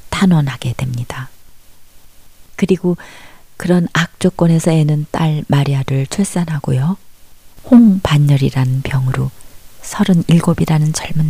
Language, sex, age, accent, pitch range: Korean, female, 40-59, native, 130-180 Hz